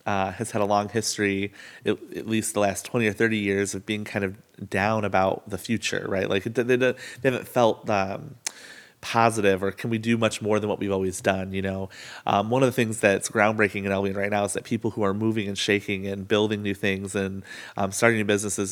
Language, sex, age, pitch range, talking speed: English, male, 30-49, 100-110 Hz, 230 wpm